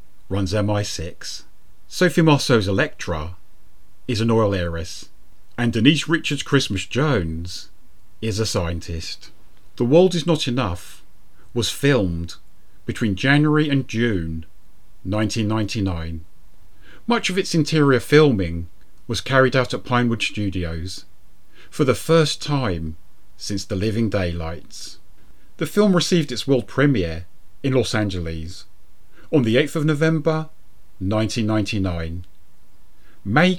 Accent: British